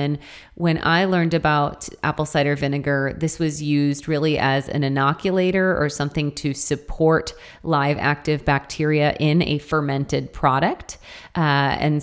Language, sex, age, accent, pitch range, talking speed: English, female, 30-49, American, 140-160 Hz, 135 wpm